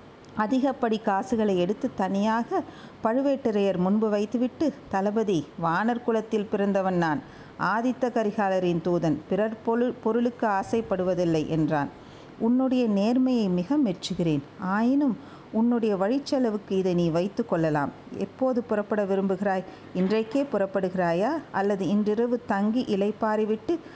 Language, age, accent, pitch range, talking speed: Tamil, 50-69, native, 190-235 Hz, 100 wpm